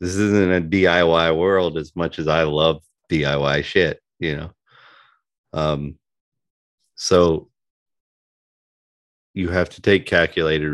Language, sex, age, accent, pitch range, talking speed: English, male, 30-49, American, 80-100 Hz, 115 wpm